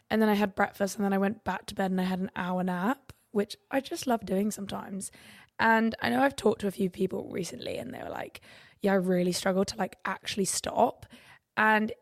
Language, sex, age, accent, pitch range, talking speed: English, female, 20-39, British, 195-230 Hz, 235 wpm